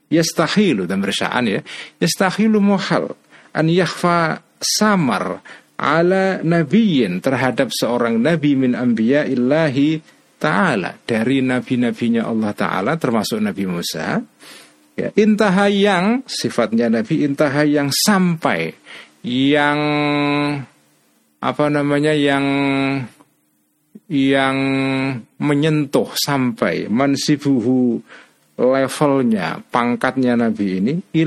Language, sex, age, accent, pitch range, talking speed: Indonesian, male, 50-69, native, 120-155 Hz, 85 wpm